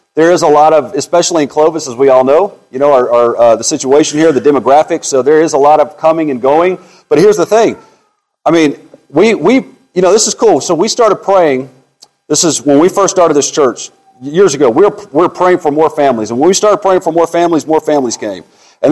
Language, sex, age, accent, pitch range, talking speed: English, male, 40-59, American, 155-205 Hz, 245 wpm